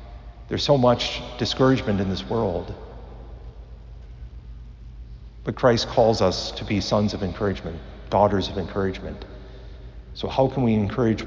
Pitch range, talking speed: 65-110 Hz, 130 wpm